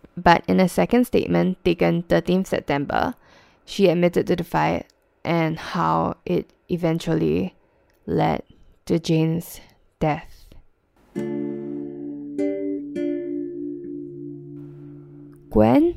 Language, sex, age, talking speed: English, female, 10-29, 85 wpm